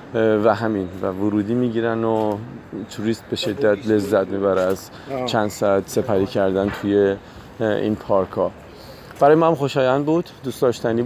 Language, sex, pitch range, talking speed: Persian, male, 105-125 Hz, 140 wpm